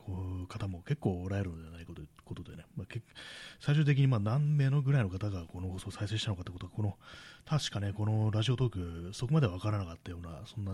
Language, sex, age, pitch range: Japanese, male, 30-49, 95-120 Hz